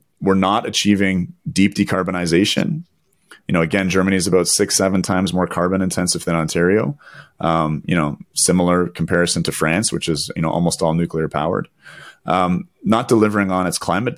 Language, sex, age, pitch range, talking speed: English, male, 30-49, 85-95 Hz, 170 wpm